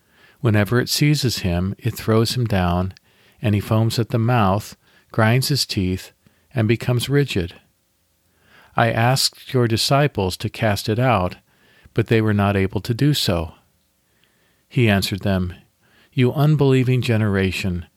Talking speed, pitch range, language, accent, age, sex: 140 wpm, 95-120 Hz, English, American, 50-69, male